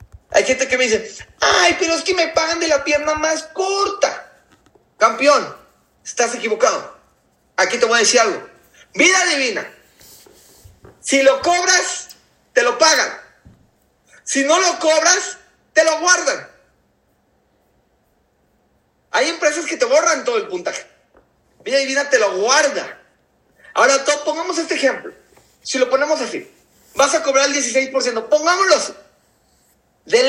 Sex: male